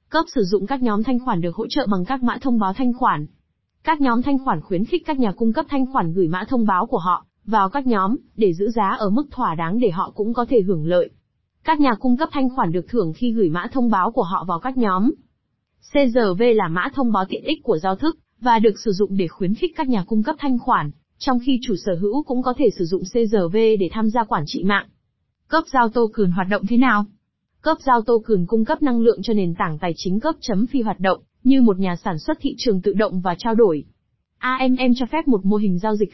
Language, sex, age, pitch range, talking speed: Vietnamese, female, 20-39, 190-255 Hz, 260 wpm